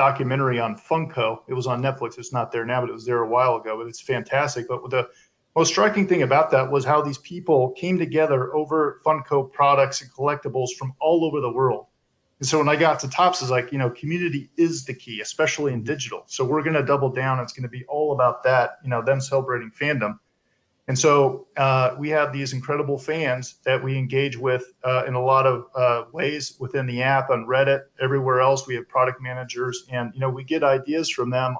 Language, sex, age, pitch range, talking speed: English, male, 40-59, 125-145 Hz, 225 wpm